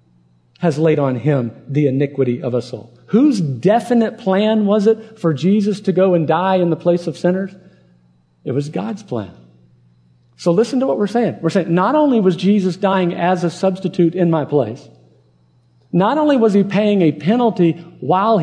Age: 50-69